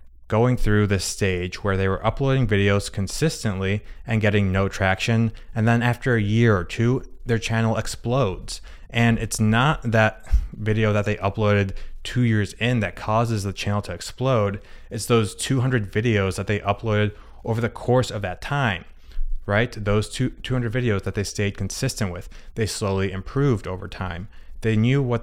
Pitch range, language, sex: 100-115 Hz, English, male